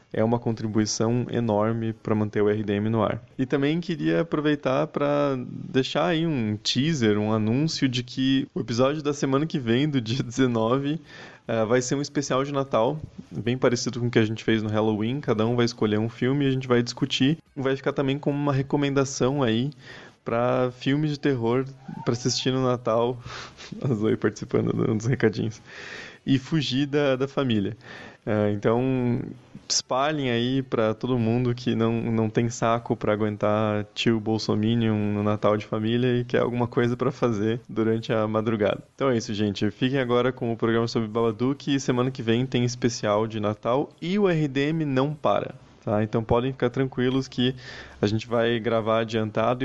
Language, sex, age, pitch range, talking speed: Portuguese, male, 20-39, 110-135 Hz, 180 wpm